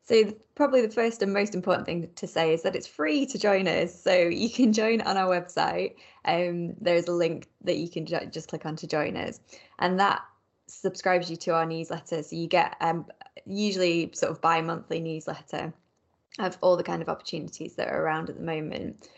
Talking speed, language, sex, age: 210 wpm, English, female, 20-39